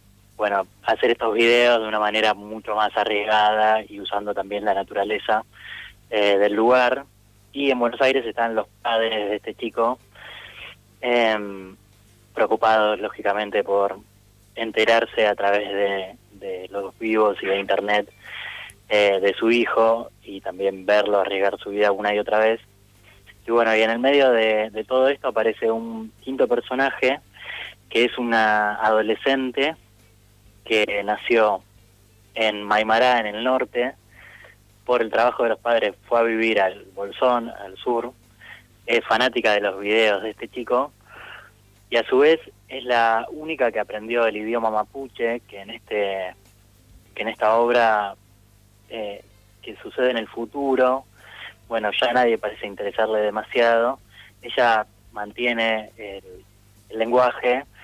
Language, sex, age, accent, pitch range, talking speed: Spanish, male, 20-39, Argentinian, 100-115 Hz, 140 wpm